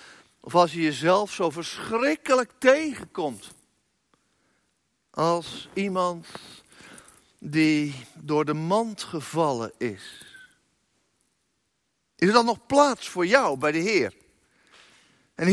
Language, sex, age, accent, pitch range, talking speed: Dutch, male, 60-79, Dutch, 175-240 Hz, 100 wpm